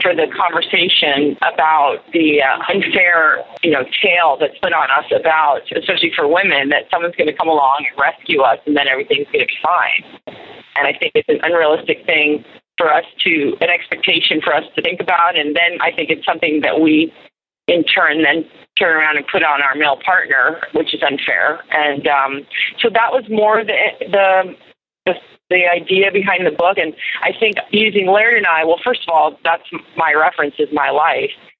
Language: English